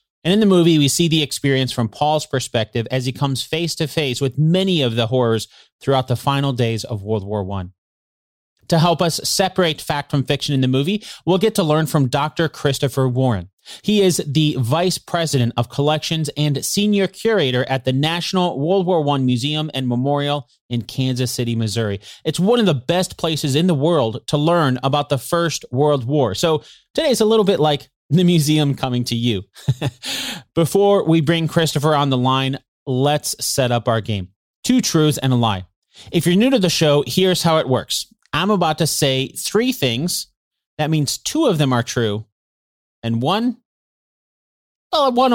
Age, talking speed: 30-49, 190 wpm